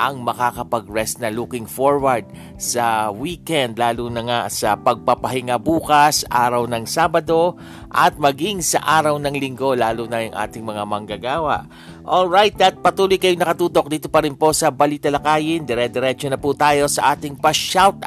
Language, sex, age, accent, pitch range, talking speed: Filipino, male, 50-69, native, 110-150 Hz, 160 wpm